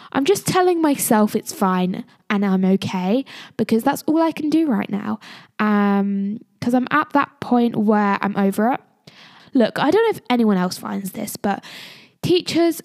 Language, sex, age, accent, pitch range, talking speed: English, female, 10-29, British, 200-270 Hz, 175 wpm